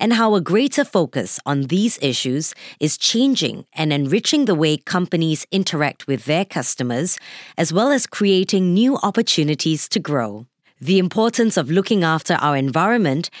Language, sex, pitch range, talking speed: English, female, 150-210 Hz, 150 wpm